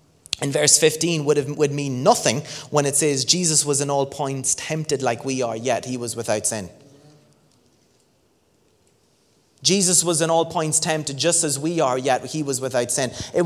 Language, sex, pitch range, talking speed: English, male, 130-165 Hz, 185 wpm